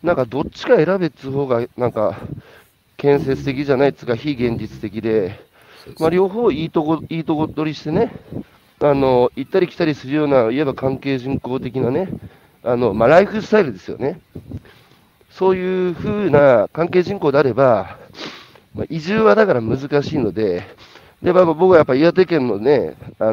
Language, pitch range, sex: Japanese, 125-165 Hz, male